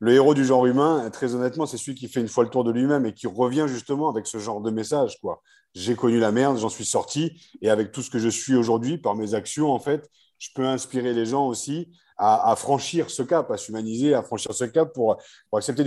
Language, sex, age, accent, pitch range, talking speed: French, male, 40-59, French, 115-145 Hz, 255 wpm